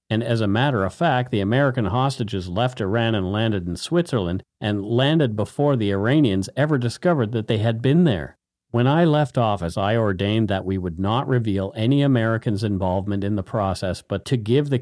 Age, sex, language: 50-69, male, English